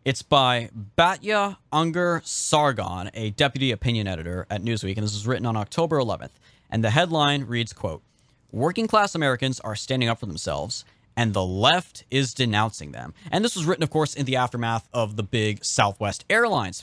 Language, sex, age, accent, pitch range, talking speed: English, male, 20-39, American, 105-140 Hz, 180 wpm